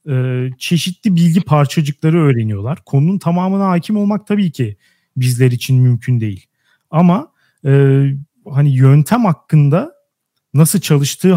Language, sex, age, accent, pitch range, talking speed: Turkish, male, 40-59, native, 140-205 Hz, 115 wpm